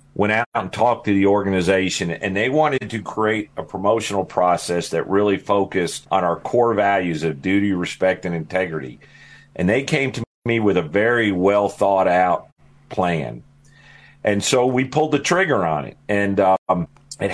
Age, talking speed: 50-69, 165 wpm